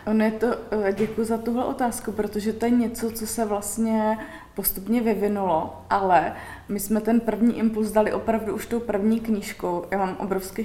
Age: 20-39